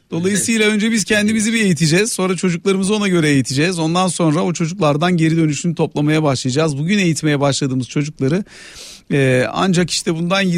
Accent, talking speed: native, 155 wpm